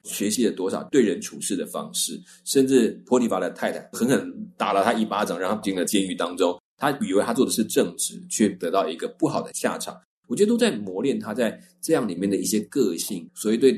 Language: Chinese